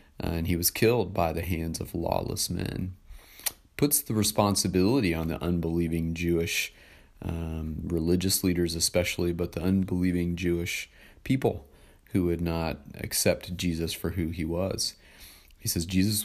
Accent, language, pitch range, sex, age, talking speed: American, English, 80-95 Hz, male, 40-59, 145 wpm